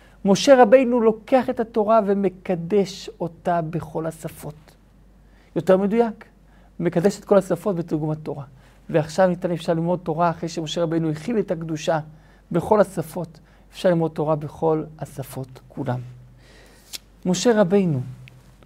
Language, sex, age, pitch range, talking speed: Hebrew, male, 50-69, 155-185 Hz, 120 wpm